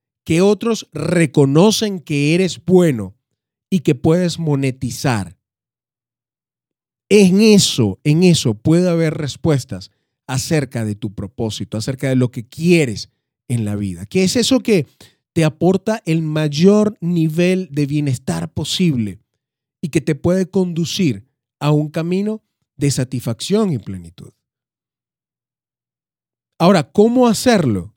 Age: 30-49